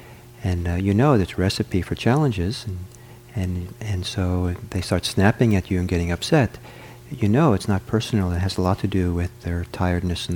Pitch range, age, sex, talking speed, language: 90-120 Hz, 40-59, male, 205 wpm, English